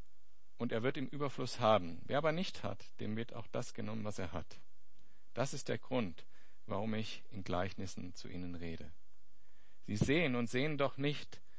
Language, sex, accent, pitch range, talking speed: German, male, German, 95-135 Hz, 180 wpm